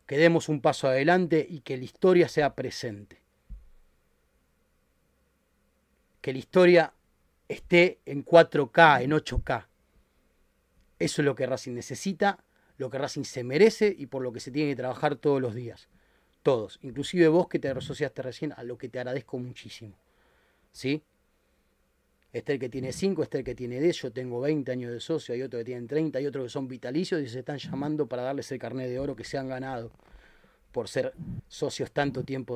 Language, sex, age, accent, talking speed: Spanish, male, 30-49, Argentinian, 185 wpm